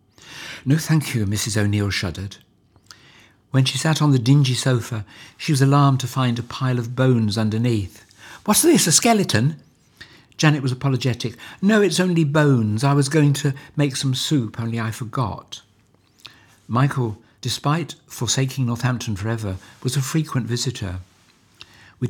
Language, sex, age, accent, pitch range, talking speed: English, male, 60-79, British, 105-140 Hz, 145 wpm